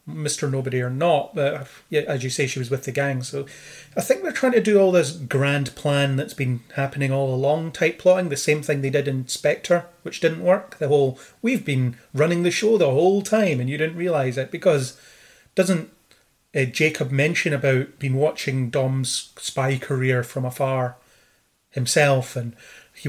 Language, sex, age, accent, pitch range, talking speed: English, male, 30-49, British, 135-160 Hz, 185 wpm